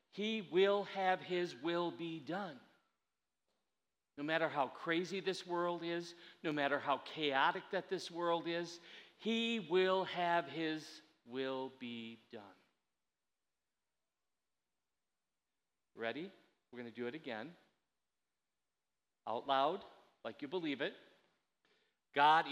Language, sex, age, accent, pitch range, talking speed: English, male, 40-59, American, 140-175 Hz, 115 wpm